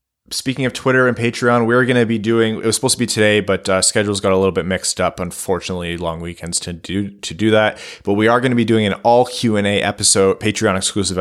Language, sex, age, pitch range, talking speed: English, male, 20-39, 90-110 Hz, 245 wpm